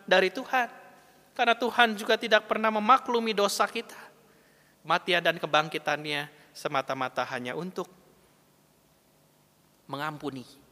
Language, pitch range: Indonesian, 145-235 Hz